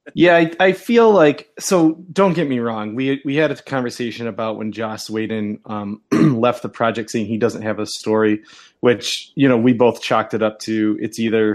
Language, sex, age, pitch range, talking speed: English, male, 20-39, 110-155 Hz, 210 wpm